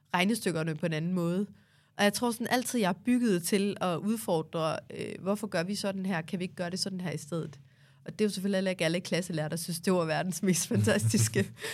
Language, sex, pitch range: Danish, female, 165-210 Hz